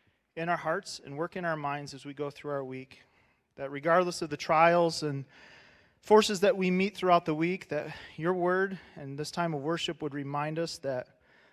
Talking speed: 205 wpm